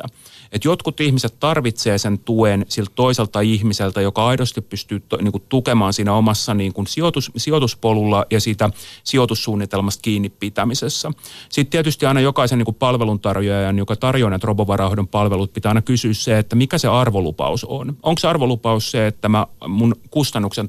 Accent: native